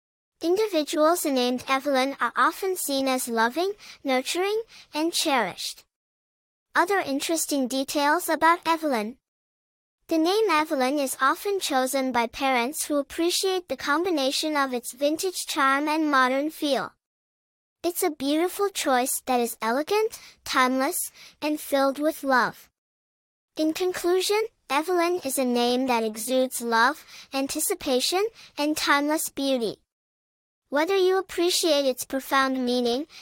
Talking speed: 120 wpm